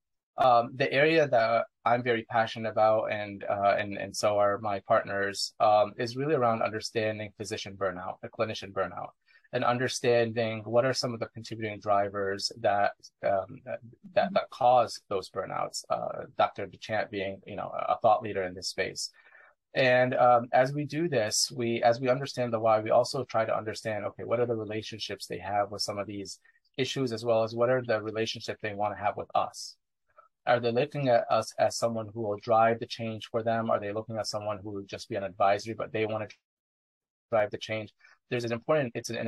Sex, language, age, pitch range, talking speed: male, English, 30-49, 105-120 Hz, 205 wpm